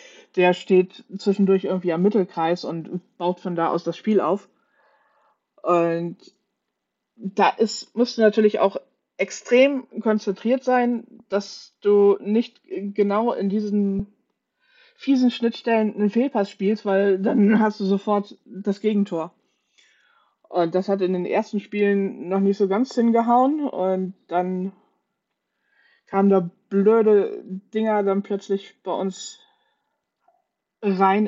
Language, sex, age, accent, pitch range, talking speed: German, female, 20-39, German, 180-220 Hz, 125 wpm